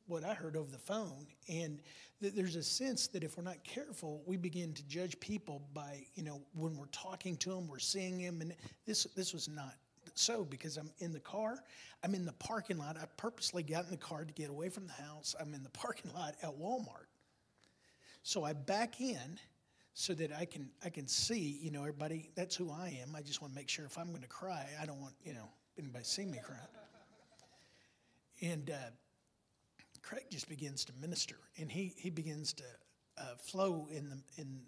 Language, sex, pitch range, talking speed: English, male, 150-185 Hz, 210 wpm